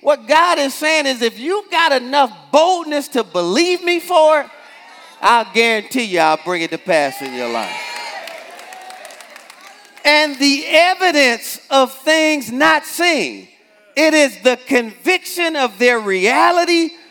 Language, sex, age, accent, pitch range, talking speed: English, male, 40-59, American, 225-305 Hz, 135 wpm